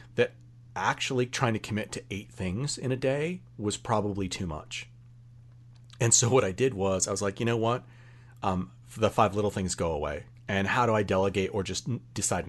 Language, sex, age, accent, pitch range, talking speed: English, male, 40-59, American, 95-120 Hz, 195 wpm